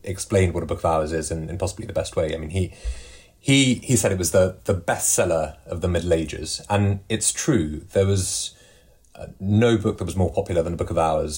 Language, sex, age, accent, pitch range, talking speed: English, male, 30-49, British, 80-100 Hz, 235 wpm